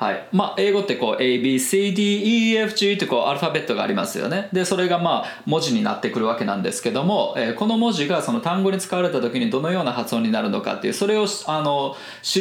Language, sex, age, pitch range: Japanese, male, 20-39, 135-205 Hz